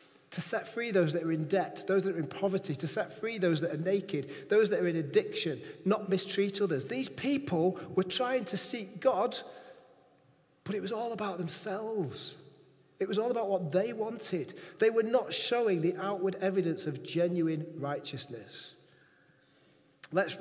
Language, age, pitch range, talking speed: English, 30-49, 145-205 Hz, 175 wpm